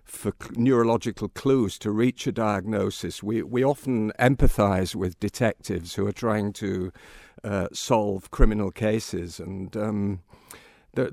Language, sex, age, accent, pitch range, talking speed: English, male, 50-69, British, 95-115 Hz, 130 wpm